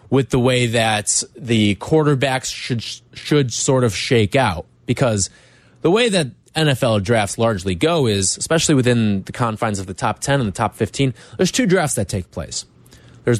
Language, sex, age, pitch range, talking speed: English, male, 20-39, 115-160 Hz, 180 wpm